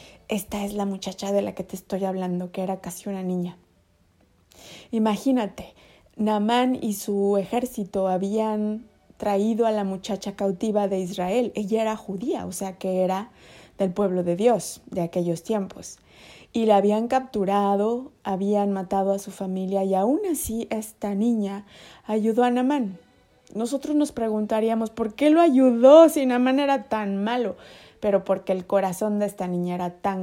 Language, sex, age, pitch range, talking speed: Spanish, female, 20-39, 190-230 Hz, 160 wpm